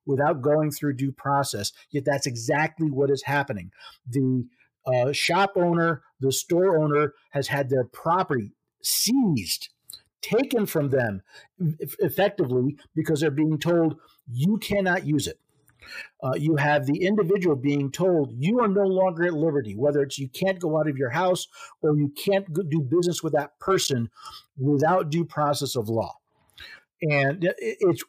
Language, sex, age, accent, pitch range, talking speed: English, male, 50-69, American, 140-180 Hz, 155 wpm